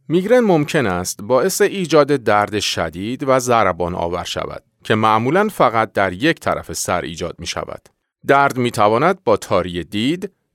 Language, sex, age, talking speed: Persian, male, 40-59, 140 wpm